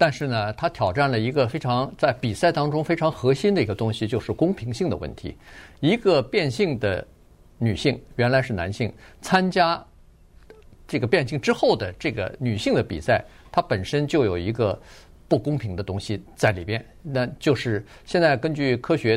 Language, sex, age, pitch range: Chinese, male, 50-69, 110-165 Hz